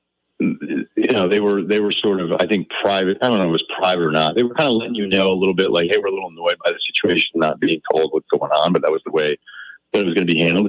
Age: 40-59